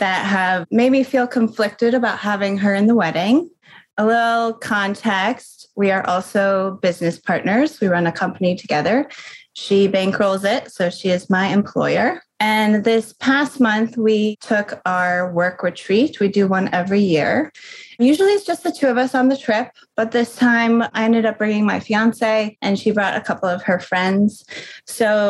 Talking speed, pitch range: 180 wpm, 195-240 Hz